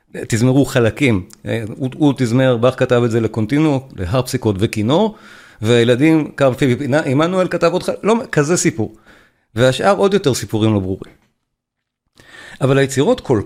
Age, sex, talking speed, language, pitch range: 50-69, male, 145 wpm, Hebrew, 115-160 Hz